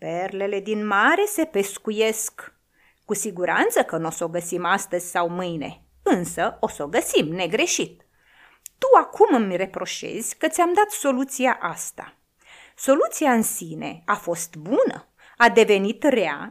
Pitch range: 185-260 Hz